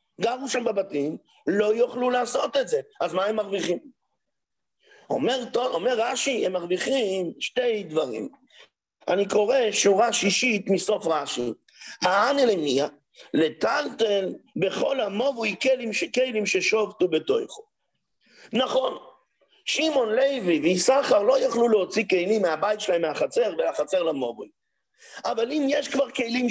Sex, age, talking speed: male, 50-69, 120 wpm